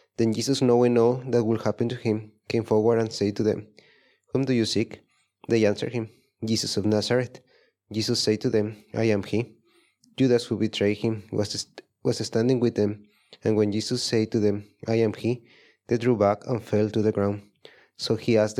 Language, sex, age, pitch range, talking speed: English, male, 30-49, 105-115 Hz, 195 wpm